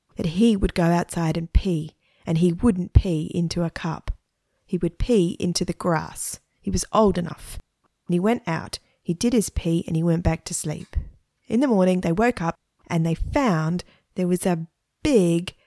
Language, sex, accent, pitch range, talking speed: English, female, Australian, 165-220 Hz, 195 wpm